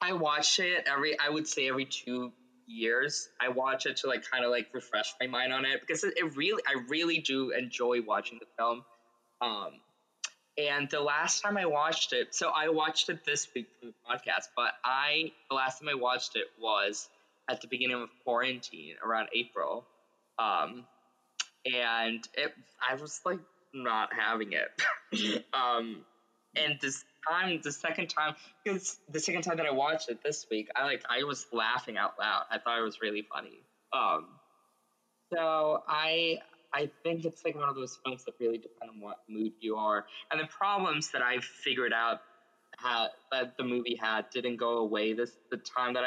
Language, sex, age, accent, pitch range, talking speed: English, male, 20-39, American, 120-160 Hz, 185 wpm